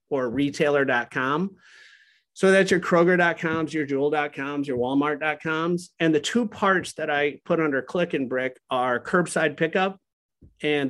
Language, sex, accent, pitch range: English, male, American, 135-175 Hz